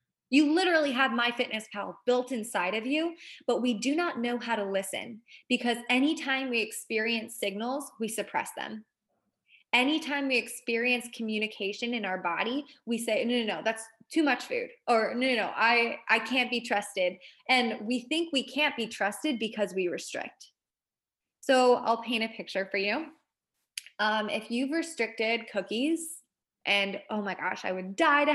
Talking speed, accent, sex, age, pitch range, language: 165 wpm, American, female, 20-39, 215-265 Hz, English